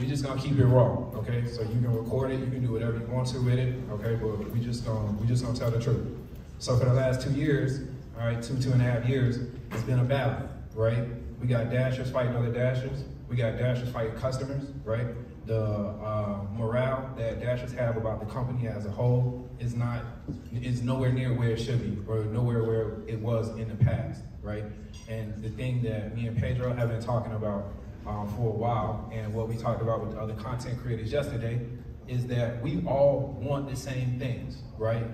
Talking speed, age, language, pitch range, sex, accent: 215 wpm, 20-39, English, 110-125 Hz, male, American